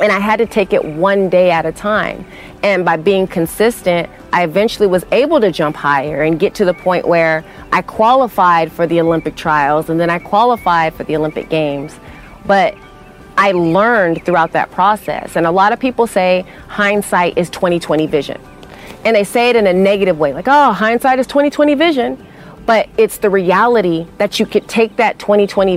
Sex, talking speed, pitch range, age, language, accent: female, 190 wpm, 175-210 Hz, 30-49, English, American